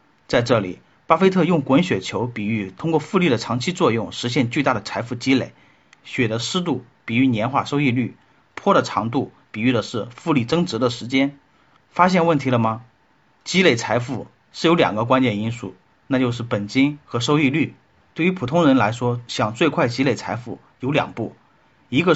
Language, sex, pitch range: Chinese, male, 120-165 Hz